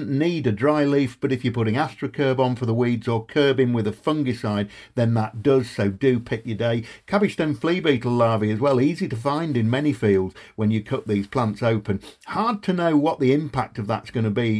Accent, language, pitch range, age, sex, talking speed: British, English, 110-140 Hz, 50-69, male, 230 wpm